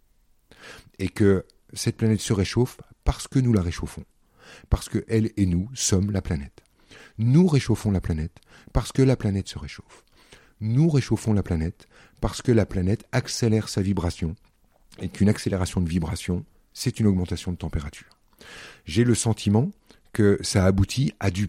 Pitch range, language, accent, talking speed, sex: 90-120 Hz, French, French, 160 wpm, male